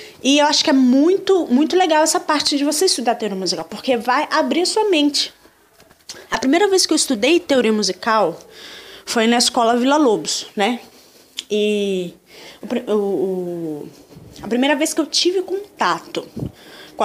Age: 20-39